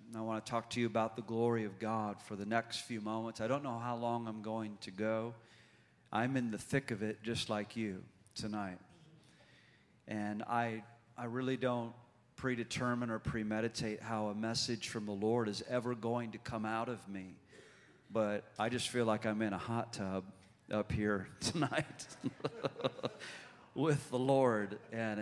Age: 40-59